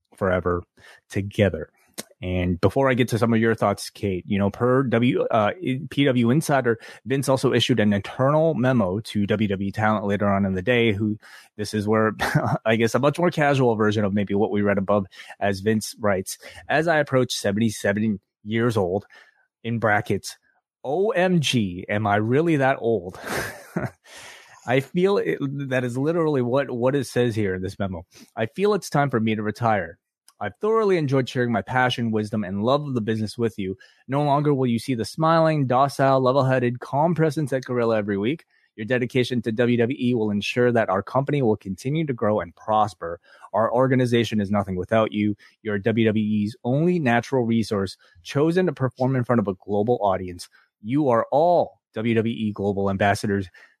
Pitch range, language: 105-130 Hz, English